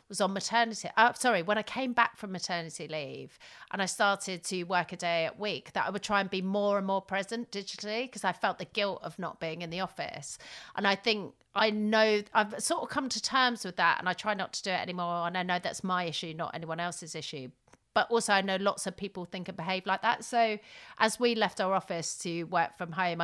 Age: 40-59